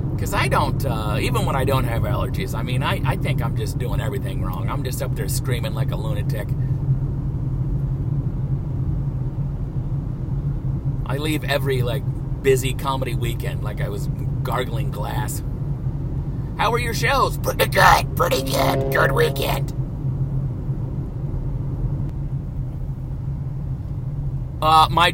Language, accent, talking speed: English, American, 125 wpm